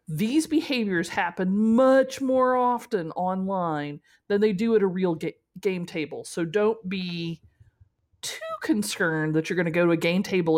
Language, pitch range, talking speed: English, 165-240 Hz, 165 wpm